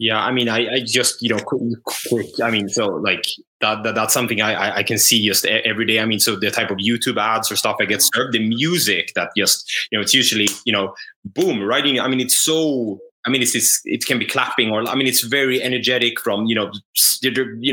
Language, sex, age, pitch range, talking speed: English, male, 20-39, 110-130 Hz, 235 wpm